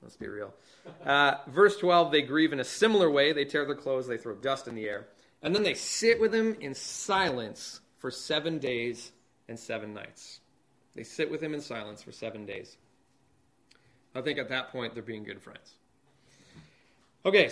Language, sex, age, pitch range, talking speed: English, male, 30-49, 125-175 Hz, 190 wpm